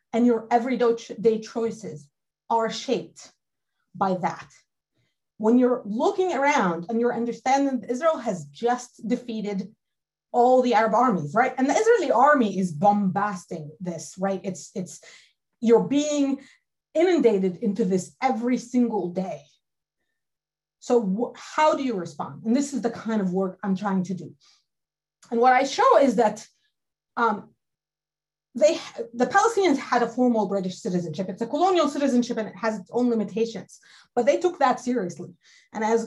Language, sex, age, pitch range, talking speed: English, female, 30-49, 195-255 Hz, 150 wpm